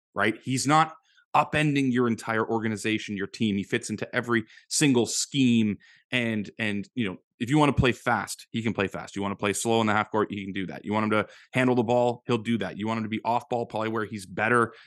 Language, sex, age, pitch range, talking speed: English, male, 20-39, 105-130 Hz, 255 wpm